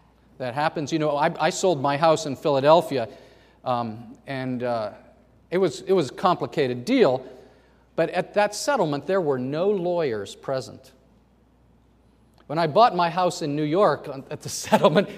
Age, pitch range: 40-59, 140-210 Hz